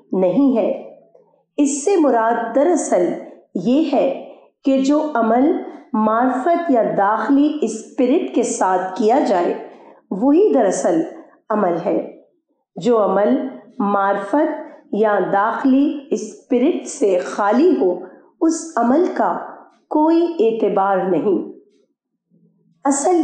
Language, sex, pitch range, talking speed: Urdu, female, 215-300 Hz, 100 wpm